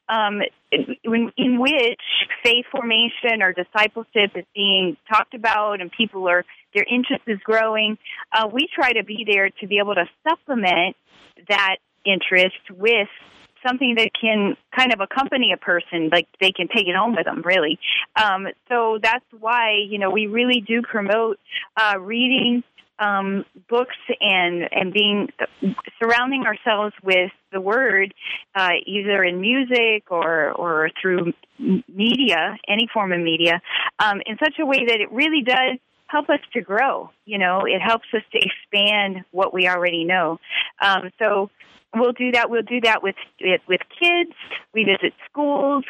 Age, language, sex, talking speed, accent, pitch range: 30-49, English, female, 160 wpm, American, 190-245 Hz